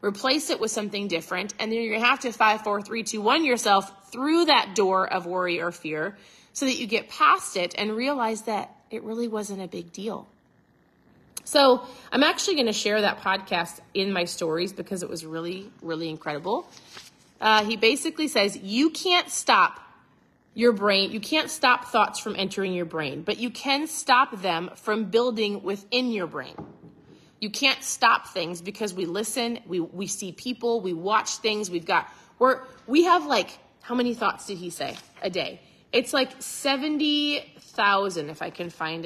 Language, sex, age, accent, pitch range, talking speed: English, female, 30-49, American, 195-265 Hz, 180 wpm